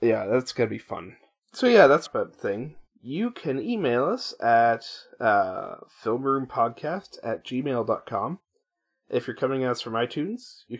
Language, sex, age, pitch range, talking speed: English, male, 20-39, 115-145 Hz, 160 wpm